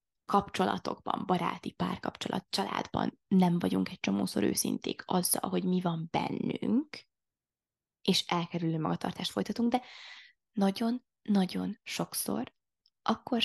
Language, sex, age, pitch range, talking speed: Hungarian, female, 20-39, 160-200 Hz, 100 wpm